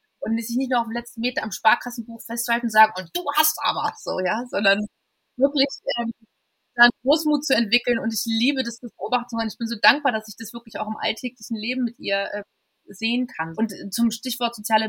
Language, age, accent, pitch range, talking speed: German, 20-39, German, 210-240 Hz, 220 wpm